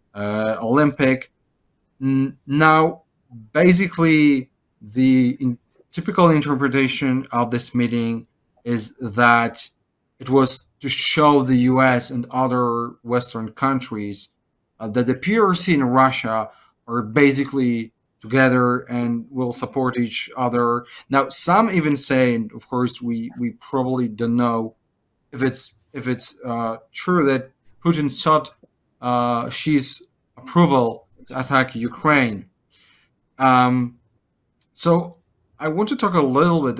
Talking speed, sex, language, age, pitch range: 120 wpm, male, English, 30-49, 115-140 Hz